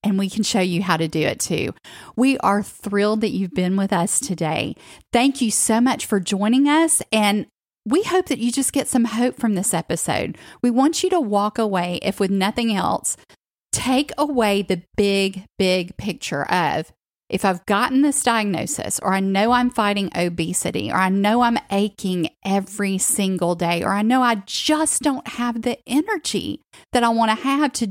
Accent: American